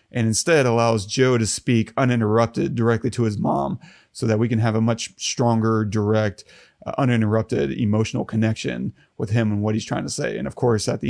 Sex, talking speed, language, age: male, 200 wpm, English, 30-49